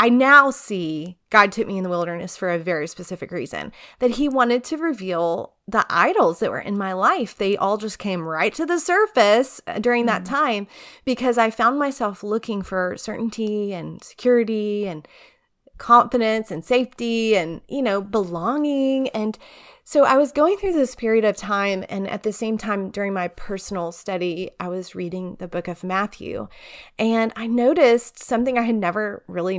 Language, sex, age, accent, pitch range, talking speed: English, female, 30-49, American, 185-250 Hz, 180 wpm